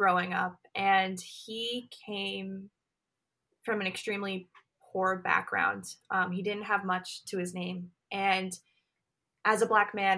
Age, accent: 20-39, American